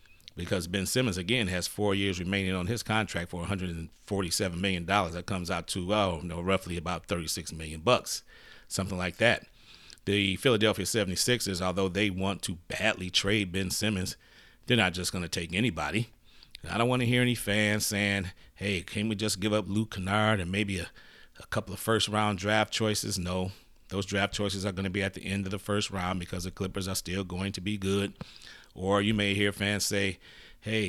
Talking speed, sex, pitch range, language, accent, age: 195 wpm, male, 90-105 Hz, English, American, 30-49